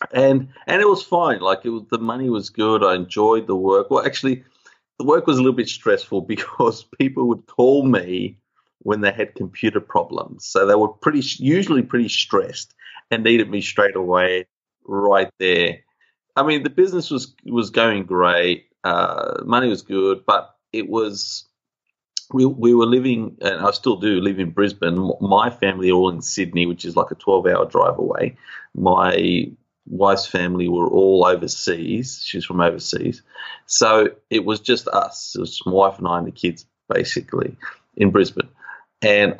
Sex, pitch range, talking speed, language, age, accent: male, 95-130 Hz, 175 wpm, English, 30-49, Australian